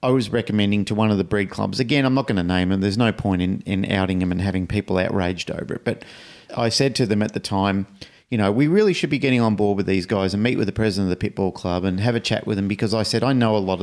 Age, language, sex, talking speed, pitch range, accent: 40-59, English, male, 310 wpm, 100-125 Hz, Australian